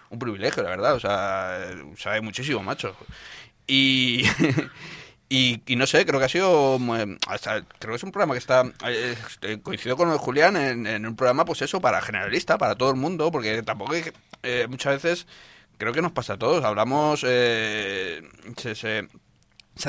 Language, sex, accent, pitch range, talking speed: Spanish, male, Spanish, 110-135 Hz, 185 wpm